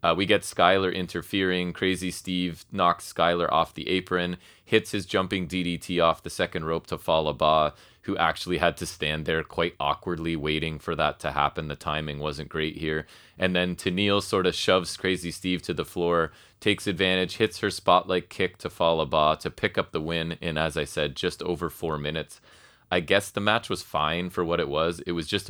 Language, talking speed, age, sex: English, 200 wpm, 30-49, male